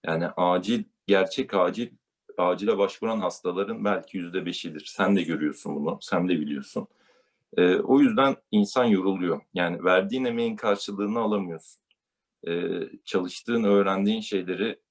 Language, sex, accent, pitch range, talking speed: Turkish, male, native, 90-105 Hz, 125 wpm